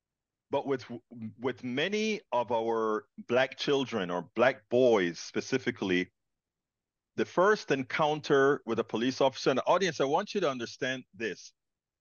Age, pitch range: 40-59, 115-170 Hz